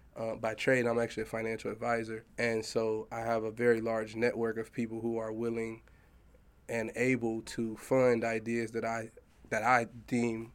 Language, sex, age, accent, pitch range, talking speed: English, male, 20-39, American, 115-120 Hz, 170 wpm